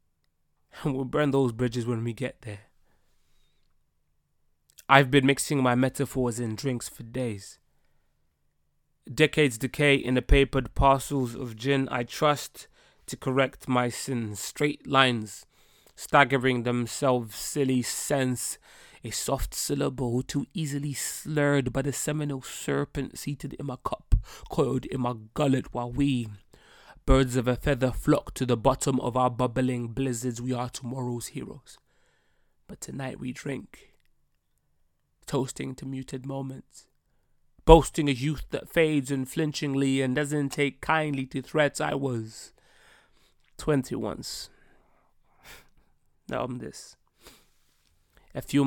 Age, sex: 20-39, male